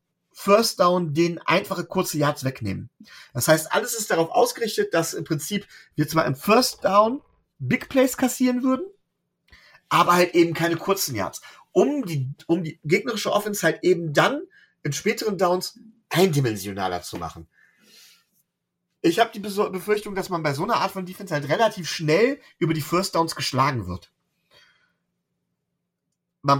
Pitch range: 130-195 Hz